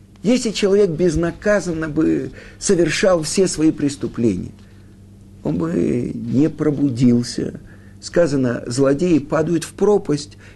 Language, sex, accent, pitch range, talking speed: Russian, male, native, 100-160 Hz, 95 wpm